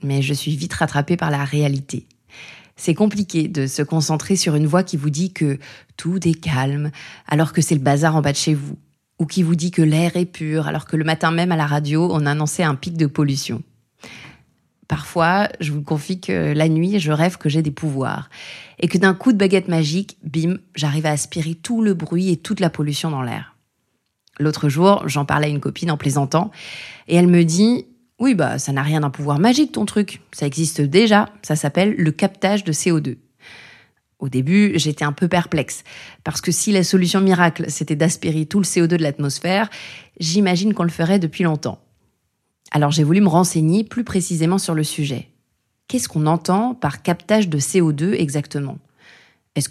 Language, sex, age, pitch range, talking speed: French, female, 30-49, 150-185 Hz, 200 wpm